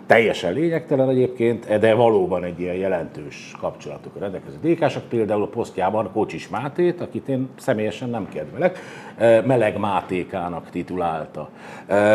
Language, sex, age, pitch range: Hungarian, male, 50-69, 110-165 Hz